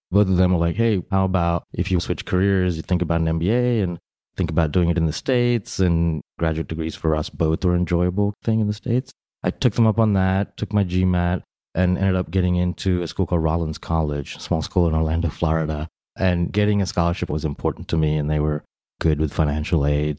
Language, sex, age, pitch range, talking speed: English, male, 30-49, 80-95 Hz, 230 wpm